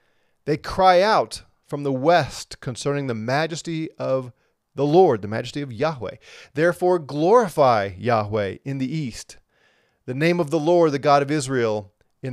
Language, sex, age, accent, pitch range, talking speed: English, male, 30-49, American, 120-160 Hz, 155 wpm